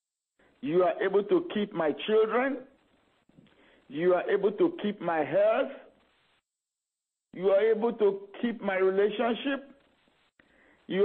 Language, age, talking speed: English, 50-69, 120 wpm